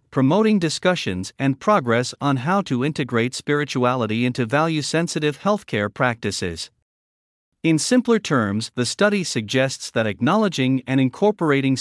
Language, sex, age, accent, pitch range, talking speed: English, male, 50-69, American, 115-170 Hz, 115 wpm